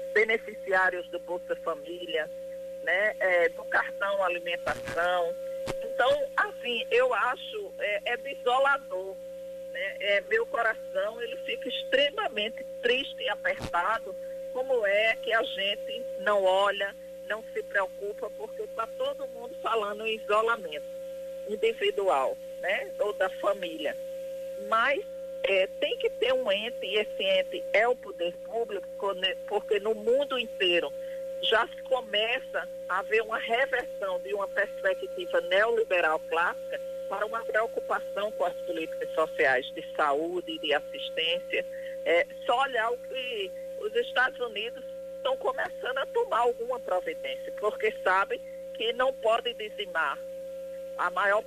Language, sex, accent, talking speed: Portuguese, female, Brazilian, 130 wpm